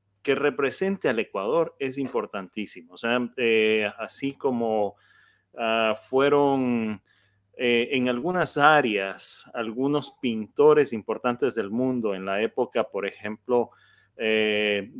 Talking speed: 110 wpm